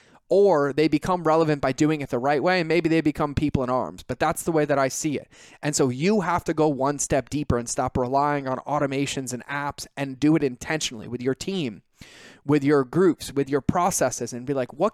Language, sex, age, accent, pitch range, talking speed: English, male, 20-39, American, 135-165 Hz, 235 wpm